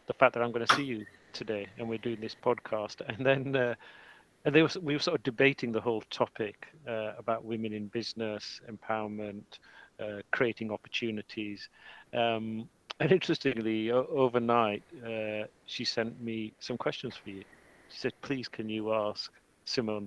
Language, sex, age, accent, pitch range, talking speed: English, male, 40-59, British, 110-135 Hz, 160 wpm